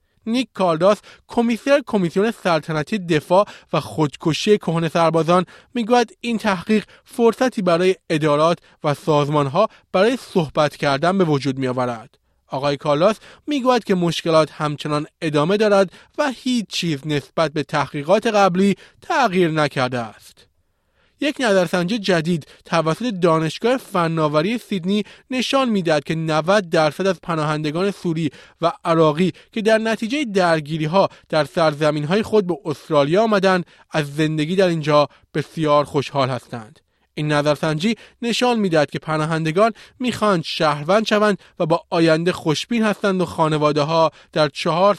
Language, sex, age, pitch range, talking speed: Persian, male, 30-49, 150-200 Hz, 130 wpm